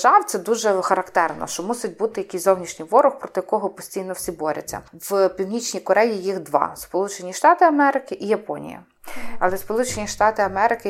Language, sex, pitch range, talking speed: Ukrainian, female, 180-220 Hz, 160 wpm